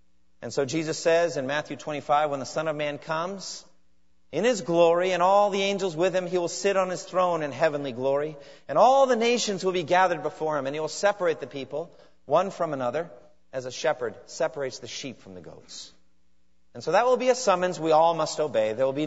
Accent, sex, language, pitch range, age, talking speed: American, male, English, 140-185 Hz, 40-59, 225 wpm